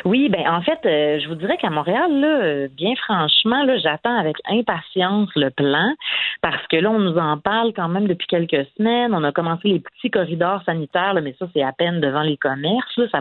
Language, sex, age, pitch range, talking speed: French, female, 40-59, 155-215 Hz, 225 wpm